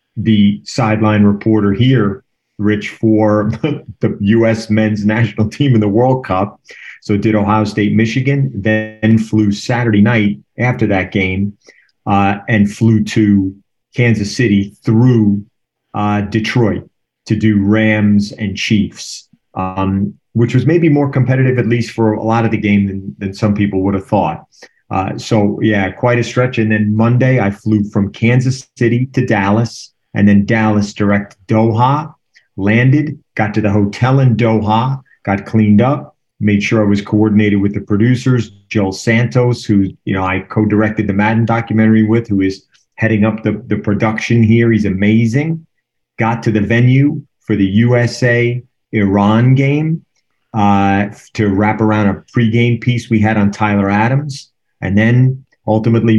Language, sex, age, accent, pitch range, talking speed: English, male, 40-59, American, 105-120 Hz, 155 wpm